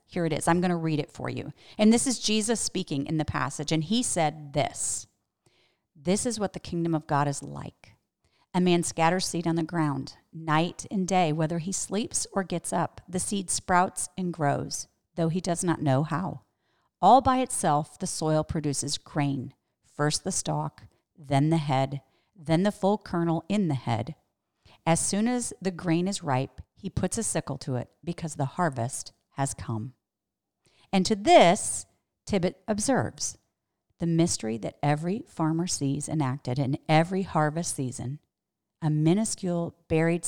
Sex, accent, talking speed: female, American, 170 wpm